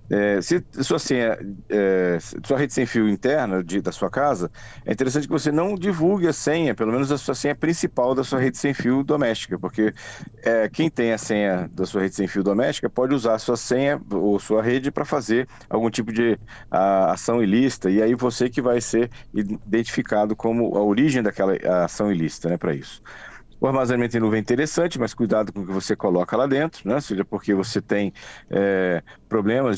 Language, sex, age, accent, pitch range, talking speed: Portuguese, male, 50-69, Brazilian, 100-130 Hz, 190 wpm